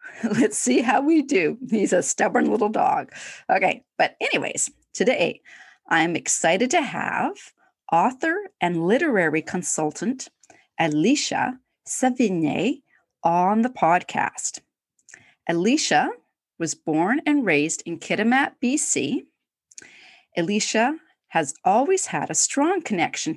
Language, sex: English, female